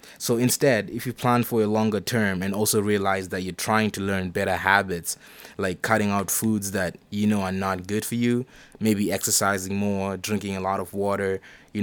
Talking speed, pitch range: 205 wpm, 95-110 Hz